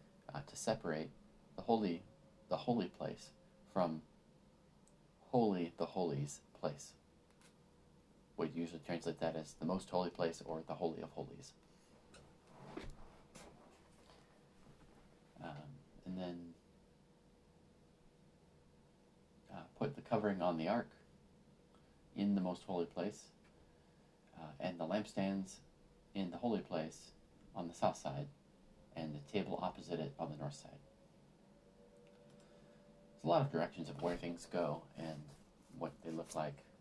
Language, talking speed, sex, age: English, 125 wpm, male, 40-59